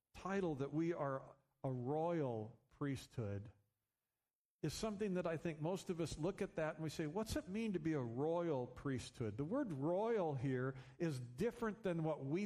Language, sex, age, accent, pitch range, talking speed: English, male, 50-69, American, 130-190 Hz, 180 wpm